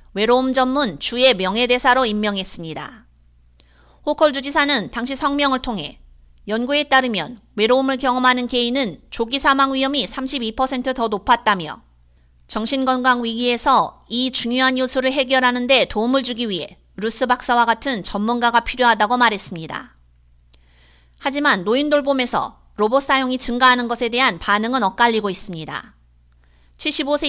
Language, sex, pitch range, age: Korean, female, 200-270 Hz, 30-49